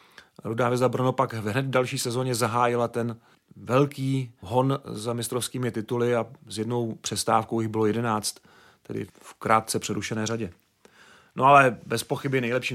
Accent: native